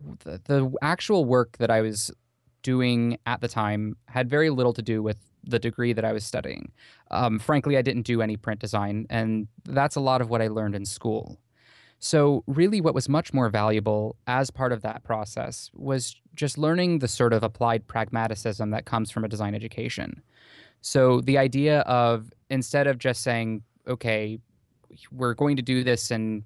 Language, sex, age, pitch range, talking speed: English, male, 20-39, 110-130 Hz, 185 wpm